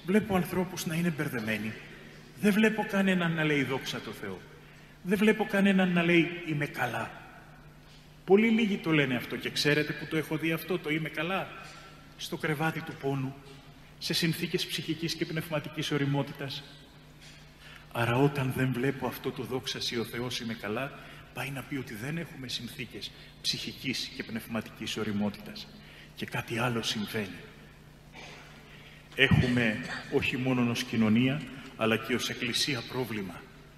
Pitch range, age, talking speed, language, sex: 130-180 Hz, 30-49, 145 wpm, Greek, male